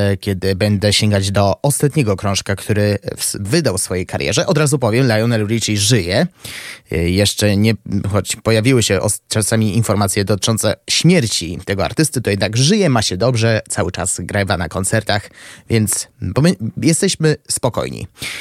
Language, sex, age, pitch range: Polish, male, 20-39, 105-145 Hz